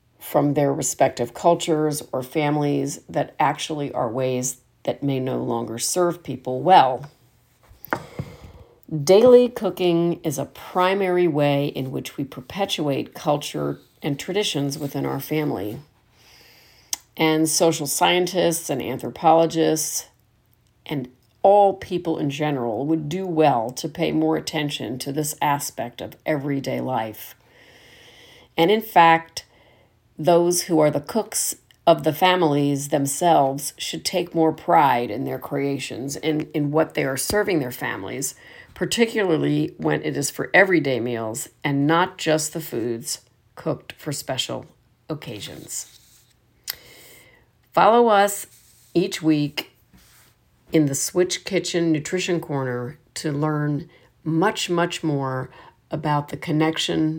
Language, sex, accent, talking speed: English, female, American, 125 wpm